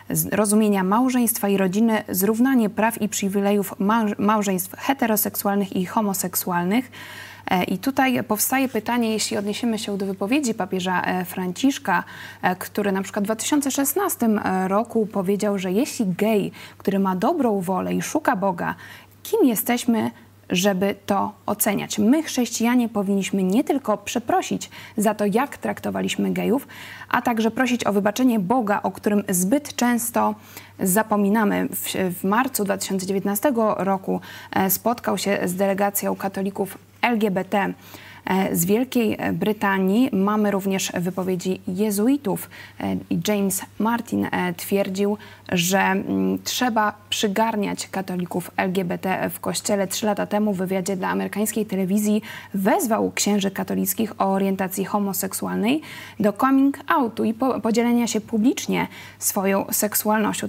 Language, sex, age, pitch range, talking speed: Polish, female, 20-39, 190-225 Hz, 115 wpm